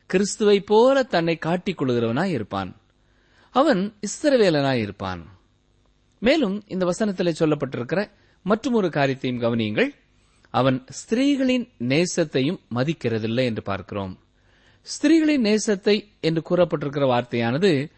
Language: Tamil